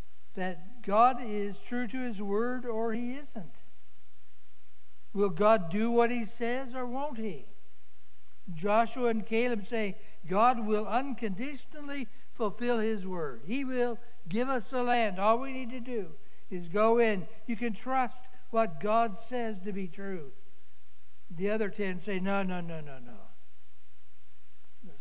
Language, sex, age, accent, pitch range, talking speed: English, male, 60-79, American, 165-220 Hz, 150 wpm